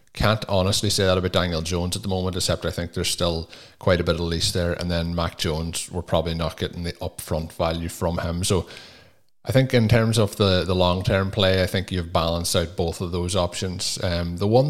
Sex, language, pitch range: male, English, 85-100 Hz